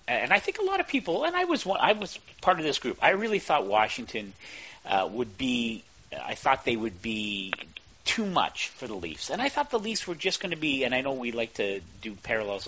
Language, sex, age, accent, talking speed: English, male, 40-59, American, 245 wpm